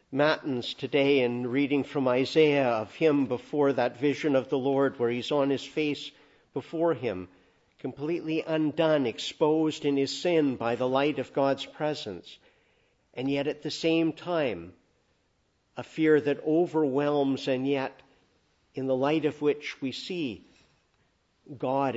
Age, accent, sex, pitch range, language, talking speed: 50-69, American, male, 130-150 Hz, English, 145 wpm